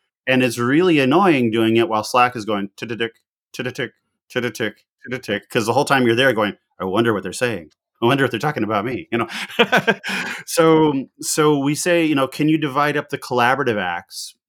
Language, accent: Polish, American